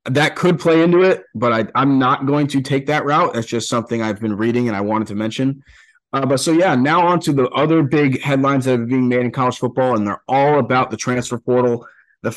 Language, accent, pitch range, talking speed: English, American, 120-145 Hz, 245 wpm